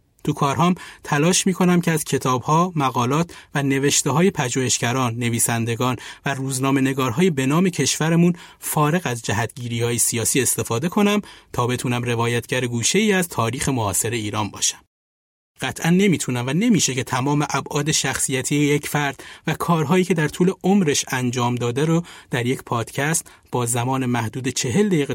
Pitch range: 125-170 Hz